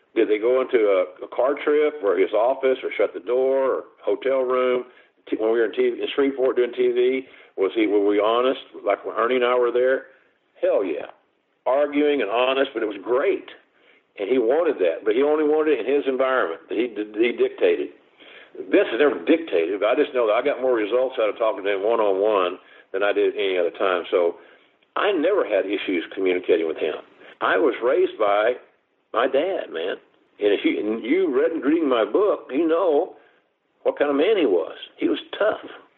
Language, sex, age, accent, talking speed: English, male, 60-79, American, 210 wpm